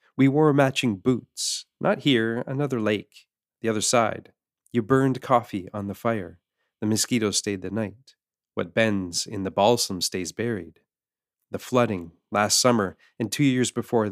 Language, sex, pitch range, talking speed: English, male, 105-130 Hz, 155 wpm